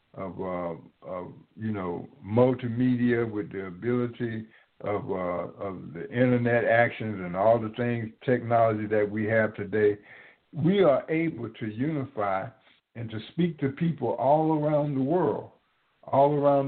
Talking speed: 145 wpm